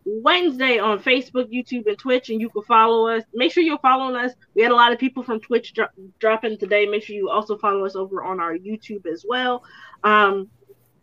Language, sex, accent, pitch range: English, female, American, 200-250 Hz